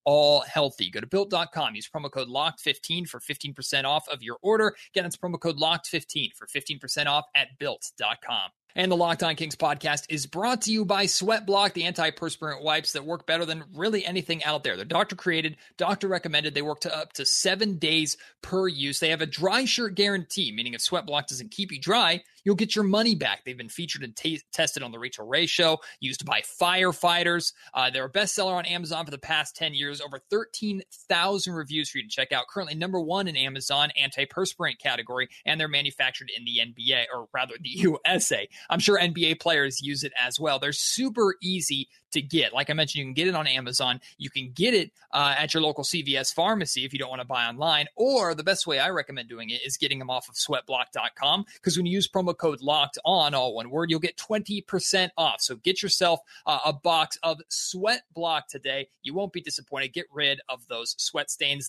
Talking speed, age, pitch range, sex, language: 210 wpm, 30-49, 140-180 Hz, male, English